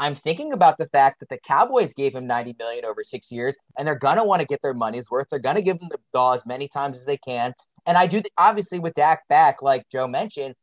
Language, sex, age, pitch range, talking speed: English, male, 30-49, 130-165 Hz, 270 wpm